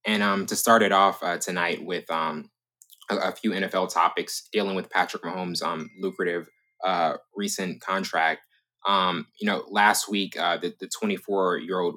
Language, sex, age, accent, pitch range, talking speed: English, male, 20-39, American, 85-105 Hz, 165 wpm